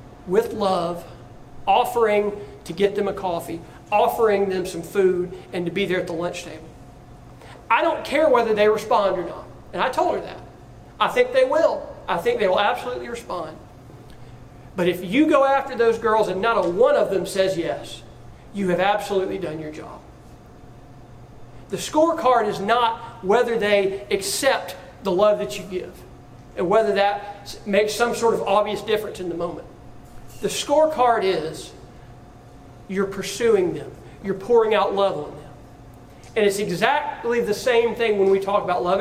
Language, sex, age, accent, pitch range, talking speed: English, male, 40-59, American, 170-230 Hz, 170 wpm